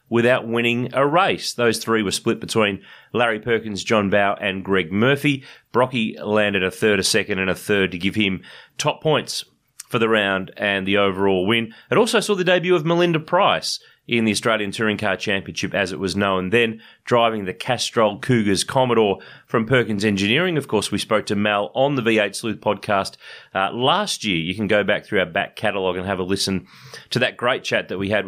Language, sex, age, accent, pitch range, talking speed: English, male, 30-49, Australian, 100-135 Hz, 205 wpm